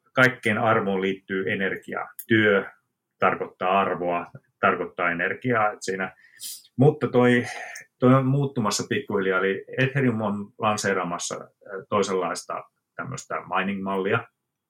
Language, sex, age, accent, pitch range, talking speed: Finnish, male, 30-49, native, 95-120 Hz, 90 wpm